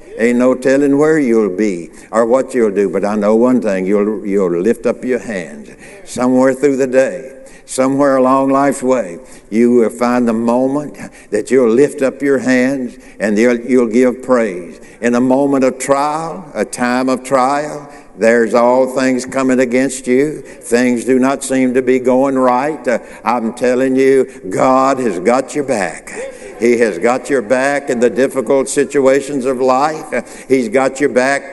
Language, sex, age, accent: English, male, 60-79, American